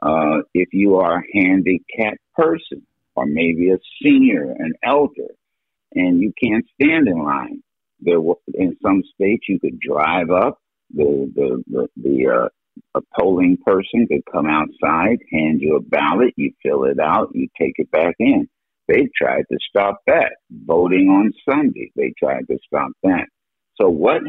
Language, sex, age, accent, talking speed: English, male, 60-79, American, 165 wpm